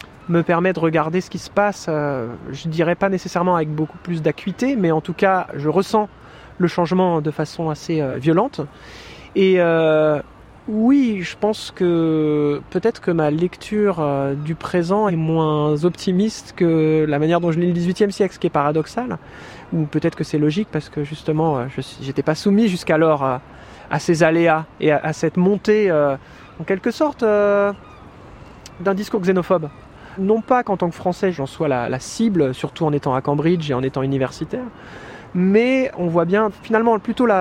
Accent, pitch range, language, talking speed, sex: French, 155-200 Hz, French, 185 wpm, male